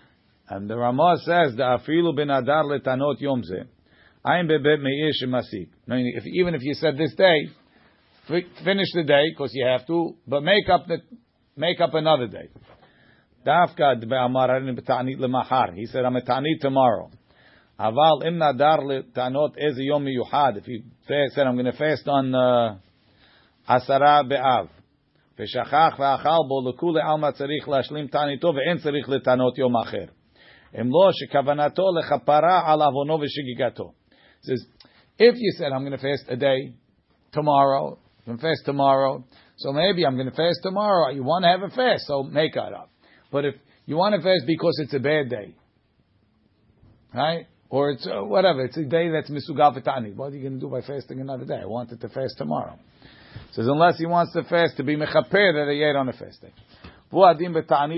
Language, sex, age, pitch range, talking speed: English, male, 50-69, 125-160 Hz, 135 wpm